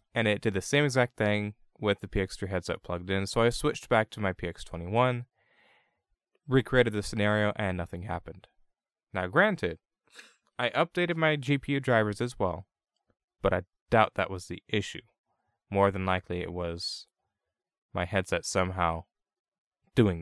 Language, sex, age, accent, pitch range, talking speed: English, male, 20-39, American, 90-115 Hz, 150 wpm